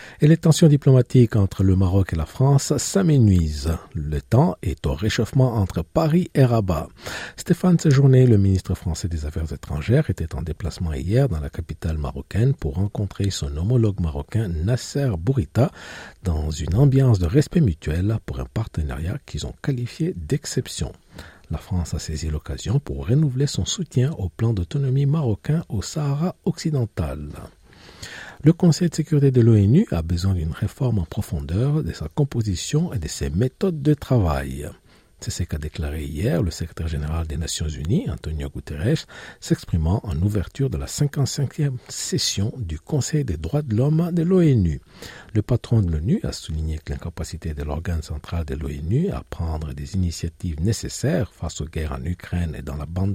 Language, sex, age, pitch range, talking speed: French, male, 50-69, 80-135 Hz, 165 wpm